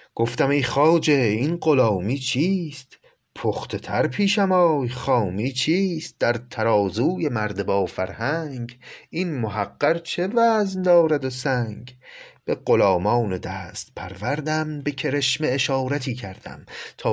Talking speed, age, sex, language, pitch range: 115 wpm, 30-49, male, Persian, 110-150 Hz